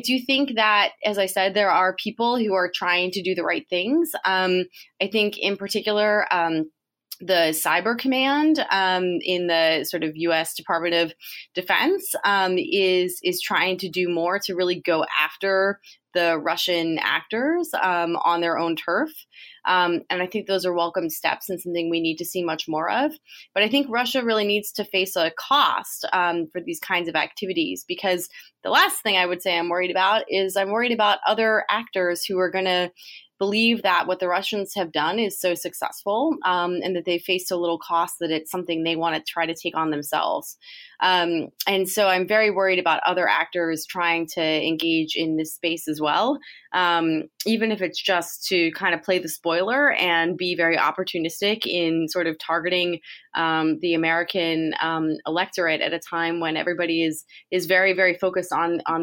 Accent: American